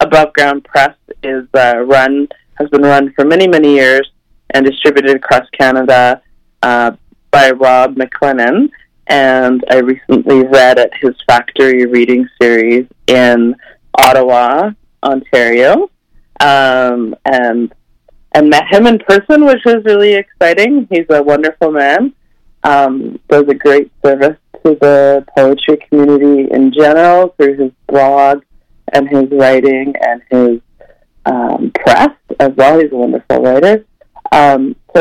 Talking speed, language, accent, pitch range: 130 wpm, English, American, 130-155 Hz